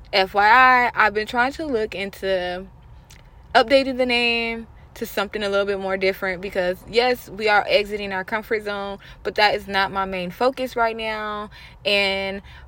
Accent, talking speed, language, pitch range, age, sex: American, 165 wpm, English, 185-220 Hz, 20-39, female